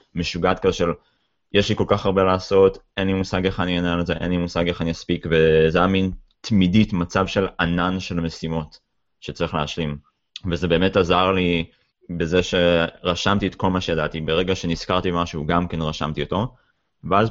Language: Hebrew